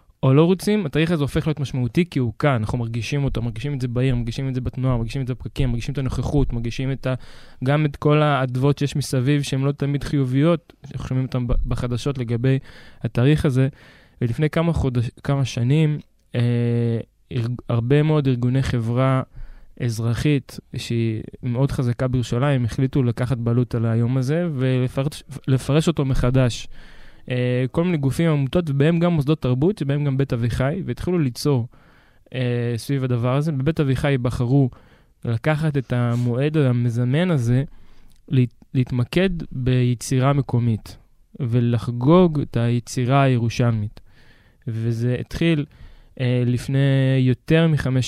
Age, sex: 20-39, male